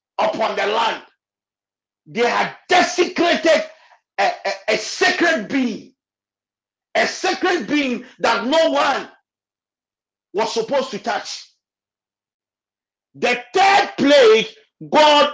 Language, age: English, 50-69